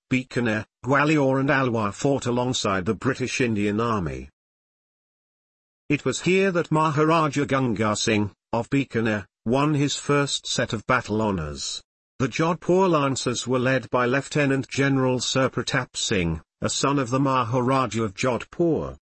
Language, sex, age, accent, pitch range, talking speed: English, male, 50-69, British, 115-145 Hz, 140 wpm